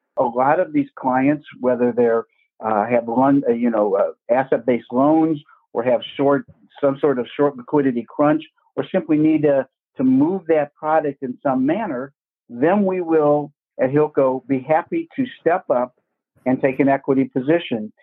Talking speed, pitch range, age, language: 170 wpm, 130-165 Hz, 60-79, English